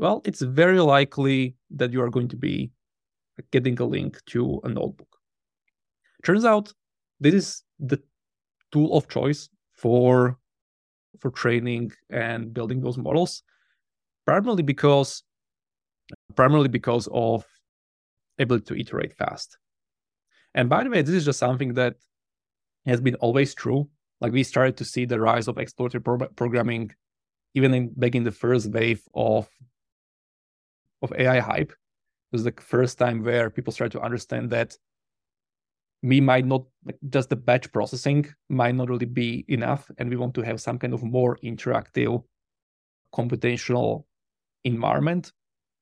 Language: English